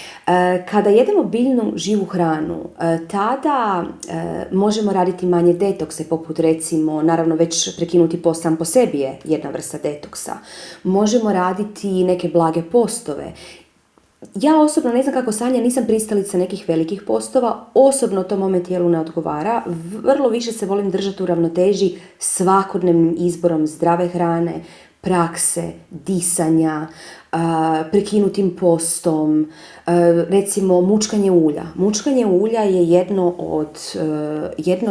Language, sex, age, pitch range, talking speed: Croatian, female, 30-49, 165-210 Hz, 120 wpm